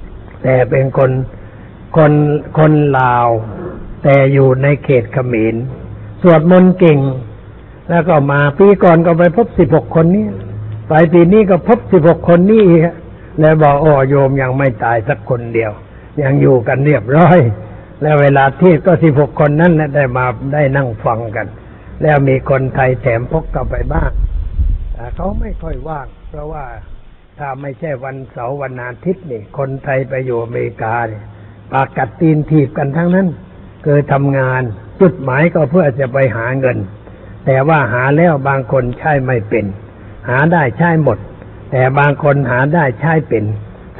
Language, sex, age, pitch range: Thai, male, 60-79, 115-155 Hz